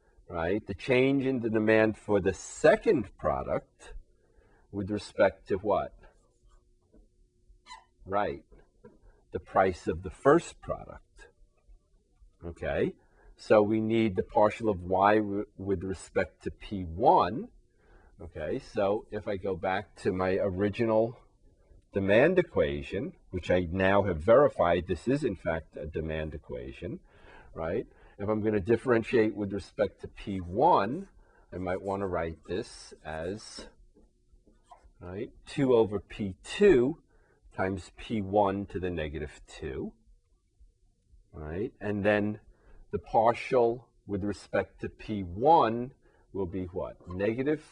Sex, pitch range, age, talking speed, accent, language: male, 90-110 Hz, 40-59, 120 wpm, American, English